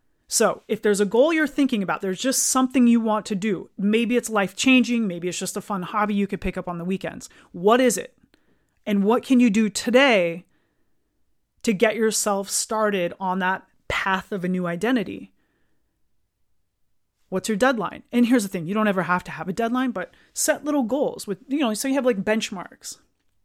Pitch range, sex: 185-225 Hz, female